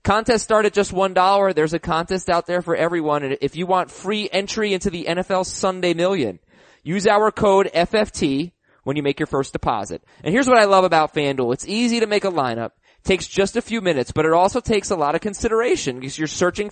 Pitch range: 150-200 Hz